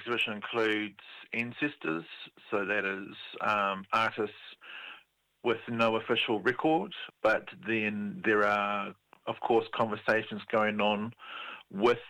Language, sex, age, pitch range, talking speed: English, male, 40-59, 105-125 Hz, 110 wpm